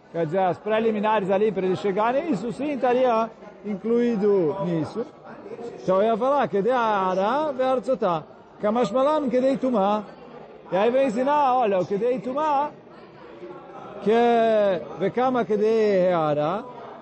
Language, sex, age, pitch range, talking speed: Portuguese, male, 40-59, 200-265 Hz, 65 wpm